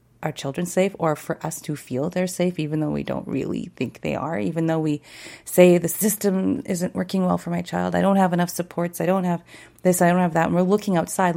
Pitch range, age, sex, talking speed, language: 155-180 Hz, 30-49, female, 250 wpm, English